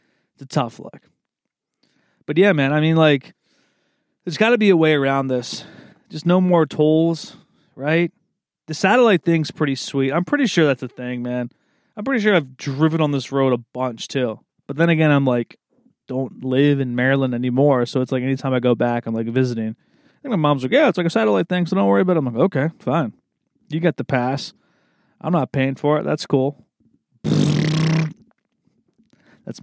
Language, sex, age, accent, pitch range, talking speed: English, male, 20-39, American, 130-175 Hz, 195 wpm